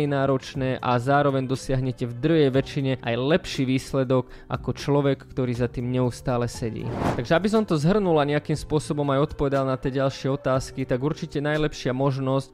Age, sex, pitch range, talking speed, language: 20-39, male, 130-150 Hz, 165 wpm, Slovak